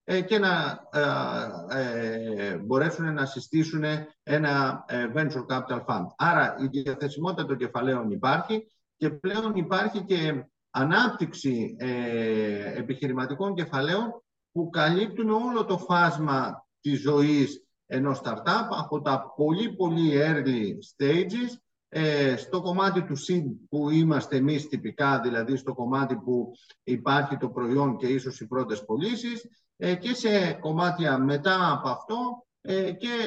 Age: 50-69